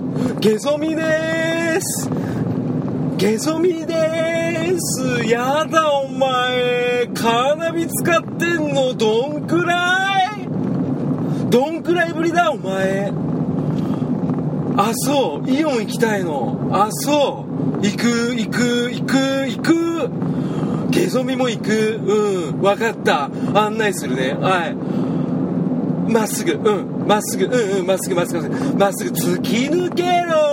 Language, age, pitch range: Japanese, 40-59, 210-295 Hz